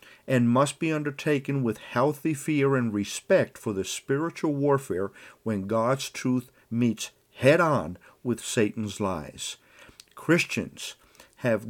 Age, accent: 50-69, American